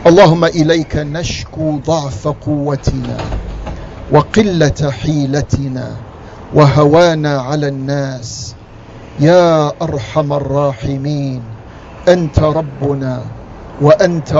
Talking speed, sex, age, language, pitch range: 65 wpm, male, 50-69, English, 125-155 Hz